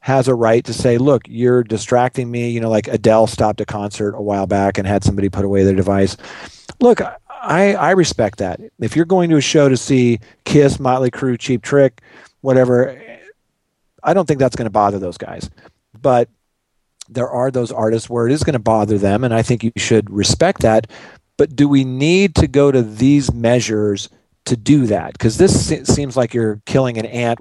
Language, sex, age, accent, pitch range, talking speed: English, male, 40-59, American, 105-130 Hz, 205 wpm